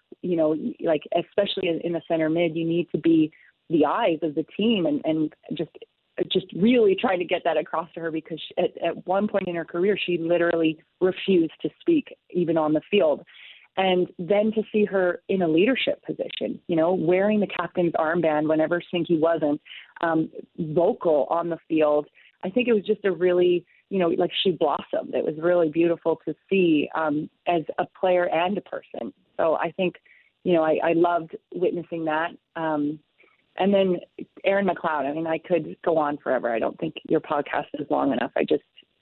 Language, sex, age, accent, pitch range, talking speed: English, female, 30-49, American, 160-190 Hz, 195 wpm